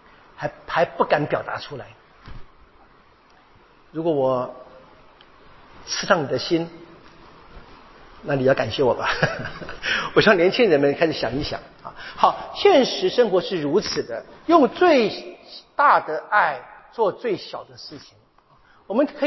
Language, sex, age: Chinese, male, 50-69